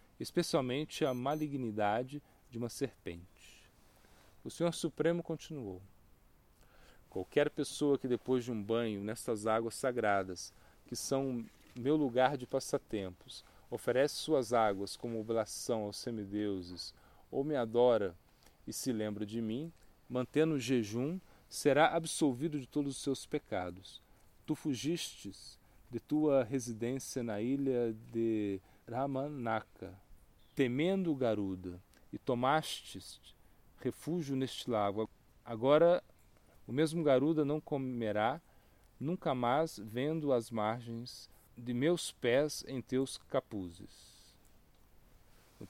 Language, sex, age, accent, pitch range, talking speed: Portuguese, male, 40-59, Brazilian, 105-140 Hz, 110 wpm